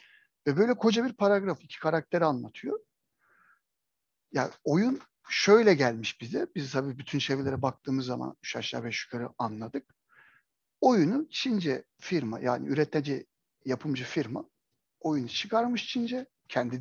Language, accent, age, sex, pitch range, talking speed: Turkish, native, 60-79, male, 130-215 Hz, 125 wpm